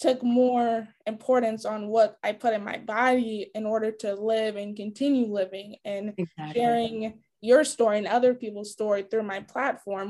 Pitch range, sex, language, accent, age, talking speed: 215-255 Hz, female, English, American, 20-39, 165 wpm